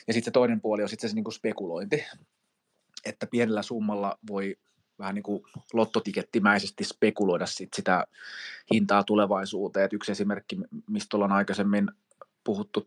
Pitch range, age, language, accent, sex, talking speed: 100-115 Hz, 20-39, Finnish, native, male, 135 wpm